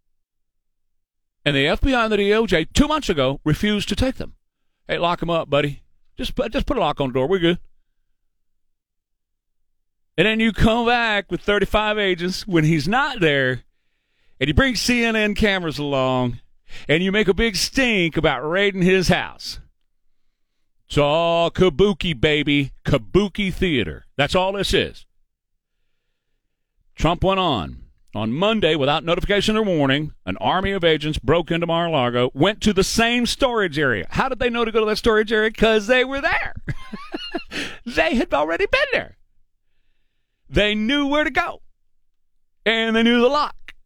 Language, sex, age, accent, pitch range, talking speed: English, male, 40-59, American, 155-225 Hz, 160 wpm